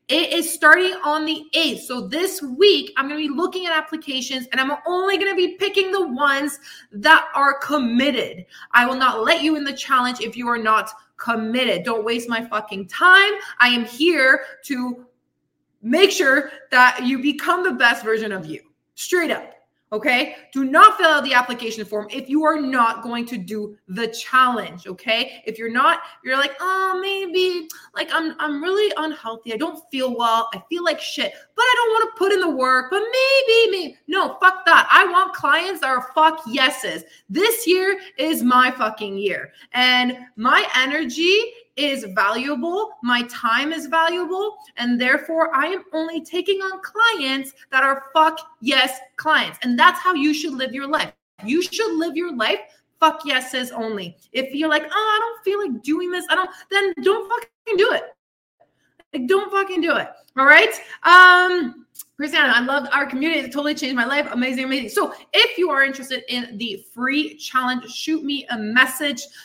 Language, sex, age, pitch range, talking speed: English, female, 20-39, 250-350 Hz, 185 wpm